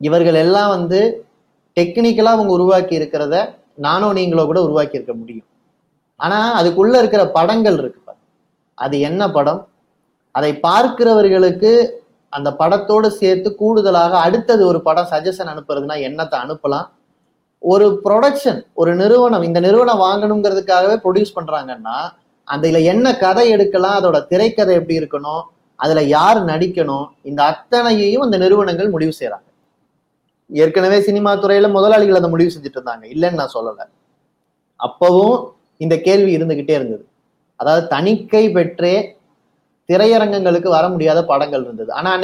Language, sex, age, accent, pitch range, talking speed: Tamil, male, 30-49, native, 165-210 Hz, 120 wpm